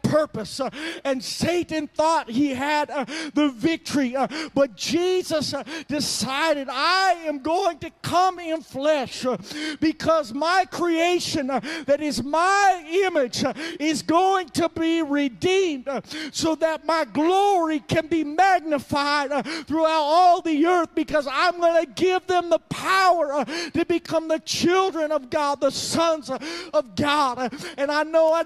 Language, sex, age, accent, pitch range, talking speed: English, male, 40-59, American, 280-330 Hz, 135 wpm